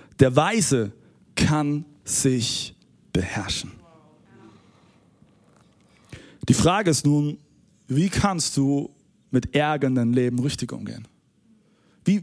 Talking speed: 90 wpm